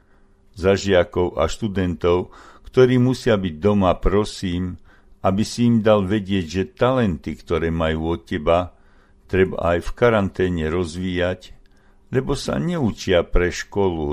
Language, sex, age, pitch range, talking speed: Slovak, male, 60-79, 85-105 Hz, 125 wpm